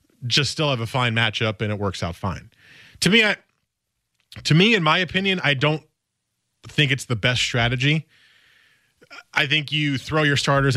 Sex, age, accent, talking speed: male, 30-49, American, 180 wpm